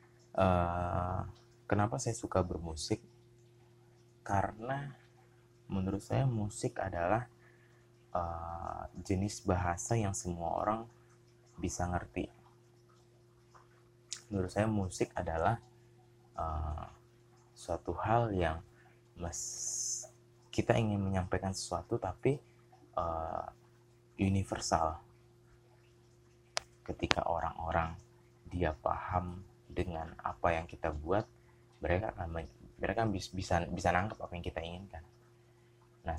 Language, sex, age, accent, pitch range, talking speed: Indonesian, male, 20-39, native, 90-120 Hz, 90 wpm